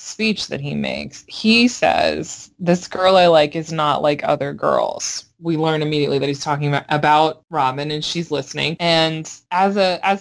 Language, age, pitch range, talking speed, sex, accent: English, 20-39, 150-175 Hz, 180 wpm, female, American